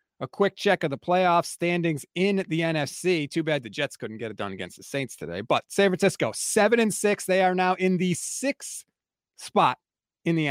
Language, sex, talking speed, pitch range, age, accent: English, male, 210 wpm, 125-170 Hz, 30-49, American